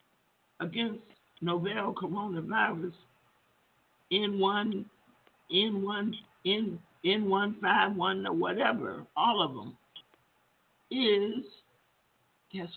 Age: 60-79